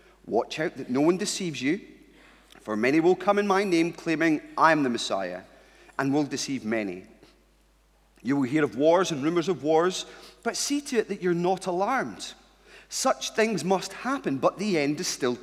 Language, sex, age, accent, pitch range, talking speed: English, male, 40-59, British, 160-220 Hz, 190 wpm